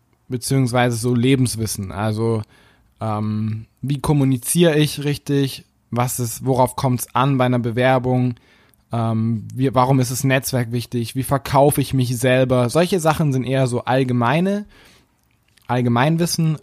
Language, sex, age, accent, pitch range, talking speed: German, male, 20-39, German, 120-150 Hz, 135 wpm